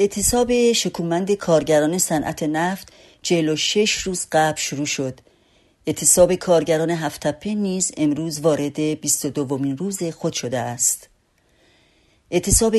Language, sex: Persian, female